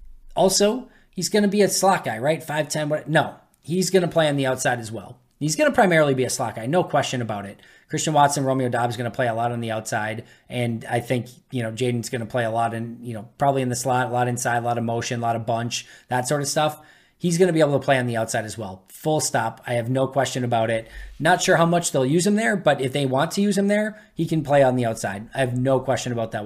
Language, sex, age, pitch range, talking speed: English, male, 20-39, 125-160 Hz, 285 wpm